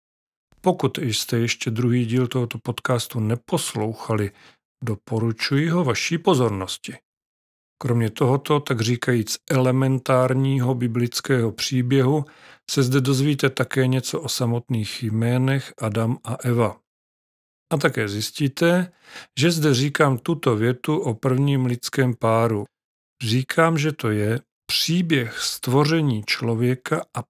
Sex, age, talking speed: male, 40-59, 110 wpm